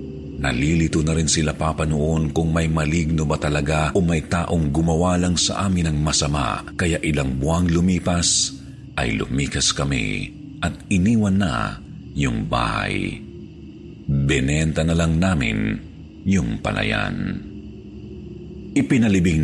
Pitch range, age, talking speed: 75-90 Hz, 50-69, 115 wpm